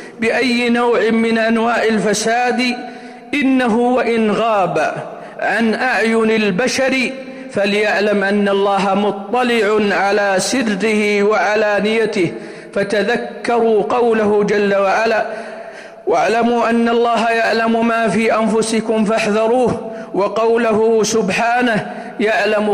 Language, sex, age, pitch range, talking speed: Arabic, male, 50-69, 185-220 Hz, 90 wpm